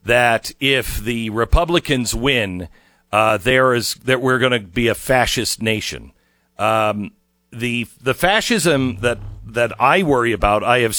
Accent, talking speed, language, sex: American, 140 wpm, English, male